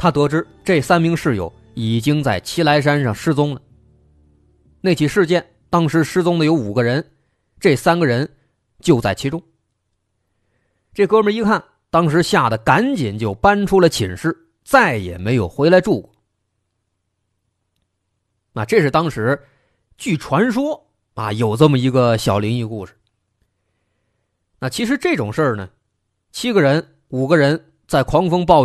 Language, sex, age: Chinese, male, 20-39